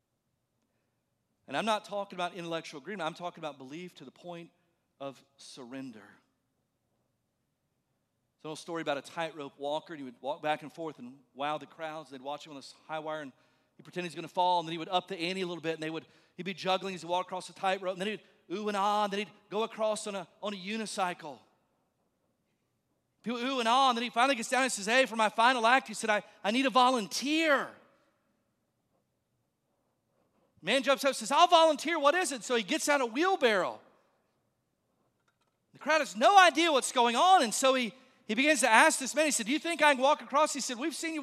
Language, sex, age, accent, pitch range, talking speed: English, male, 40-59, American, 175-285 Hz, 230 wpm